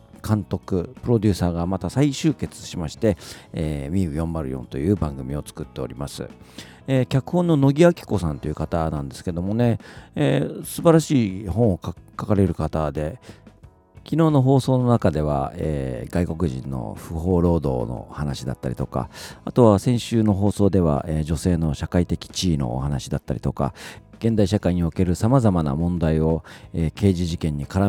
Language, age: Japanese, 40-59